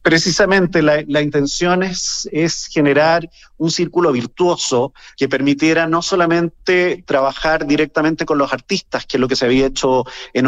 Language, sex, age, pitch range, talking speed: Spanish, male, 40-59, 130-165 Hz, 155 wpm